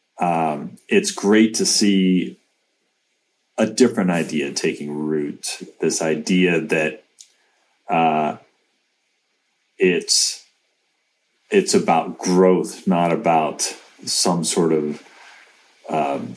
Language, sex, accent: English, male, American